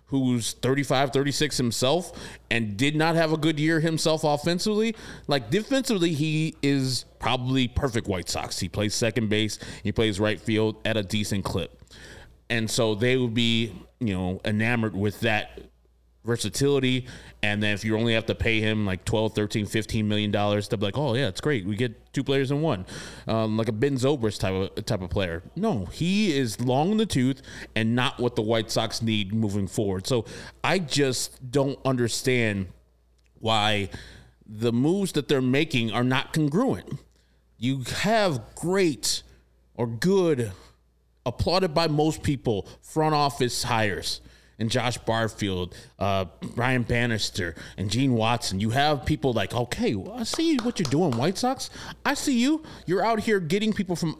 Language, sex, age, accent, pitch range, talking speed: English, male, 30-49, American, 105-155 Hz, 170 wpm